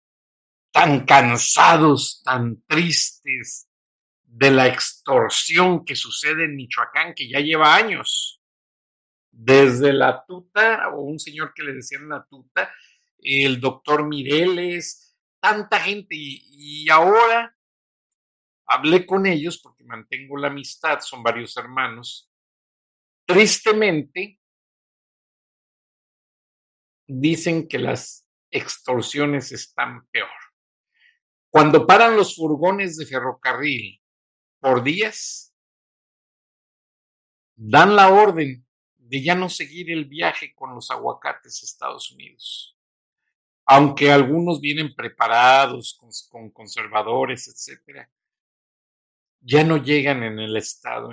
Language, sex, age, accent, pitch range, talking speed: Spanish, male, 50-69, Mexican, 125-170 Hz, 100 wpm